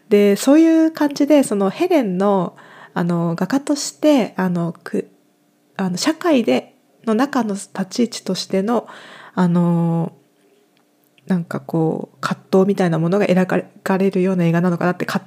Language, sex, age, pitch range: Japanese, female, 20-39, 170-220 Hz